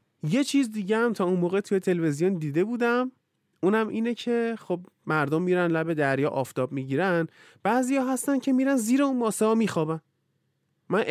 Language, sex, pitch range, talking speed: Persian, male, 130-195 Hz, 180 wpm